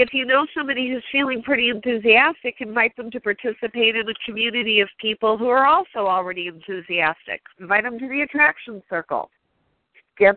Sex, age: female, 50-69